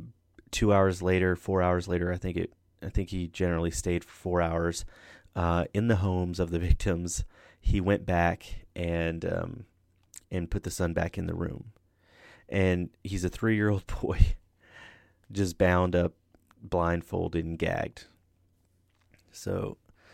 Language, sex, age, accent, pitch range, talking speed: English, male, 30-49, American, 85-95 Hz, 145 wpm